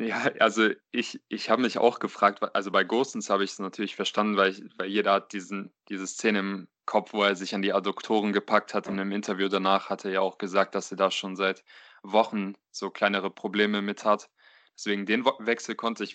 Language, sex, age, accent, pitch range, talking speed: German, male, 20-39, German, 100-105 Hz, 210 wpm